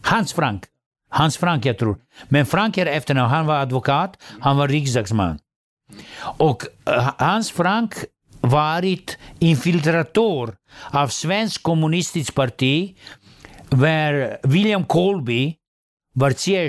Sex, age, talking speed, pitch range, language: male, 60-79, 110 wpm, 130-170 Hz, Swedish